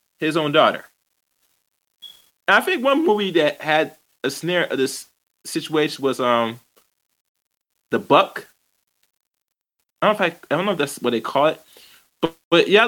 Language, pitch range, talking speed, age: English, 135-175 Hz, 170 wpm, 20-39